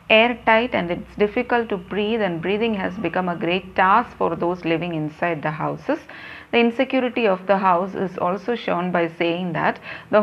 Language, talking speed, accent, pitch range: English, 180 wpm, Indian, 170-220 Hz